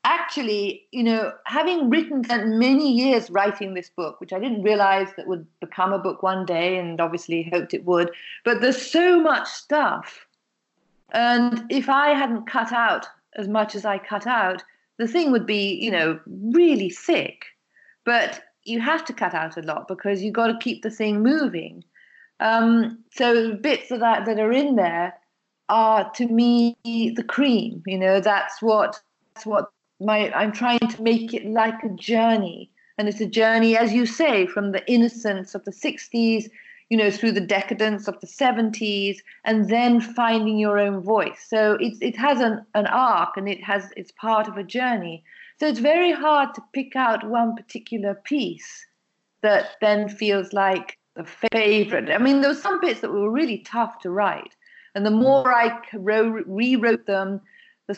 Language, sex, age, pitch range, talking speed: English, female, 40-59, 200-245 Hz, 180 wpm